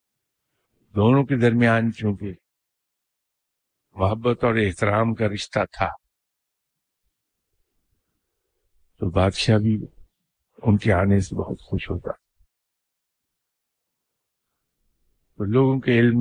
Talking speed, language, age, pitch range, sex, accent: 80 wpm, English, 60-79, 90-115 Hz, male, Indian